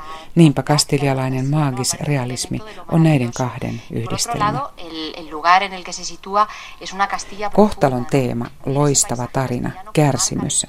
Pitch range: 125-150 Hz